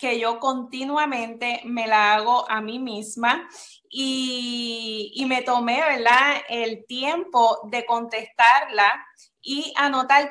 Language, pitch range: Spanish, 230-295 Hz